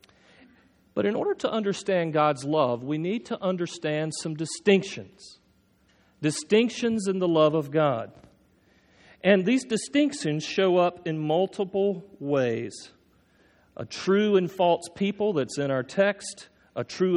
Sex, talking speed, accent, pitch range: male, 135 wpm, American, 145-195 Hz